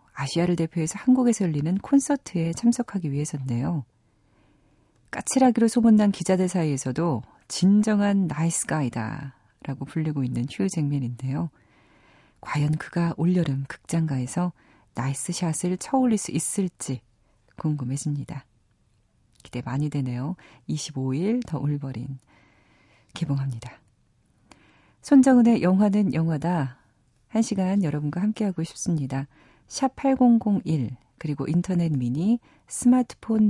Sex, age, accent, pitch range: female, 40-59, native, 135-180 Hz